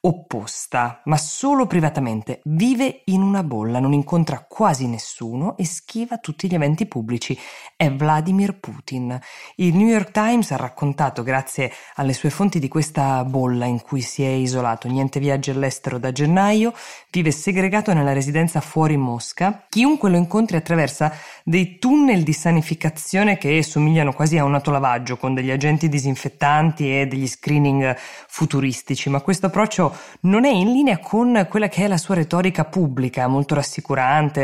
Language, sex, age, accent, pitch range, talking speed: Italian, female, 20-39, native, 130-175 Hz, 155 wpm